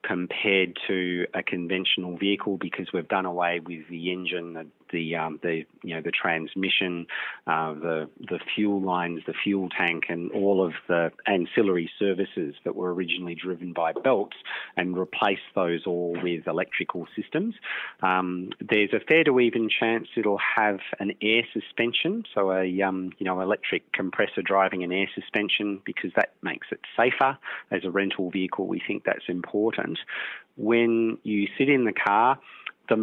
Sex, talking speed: male, 165 wpm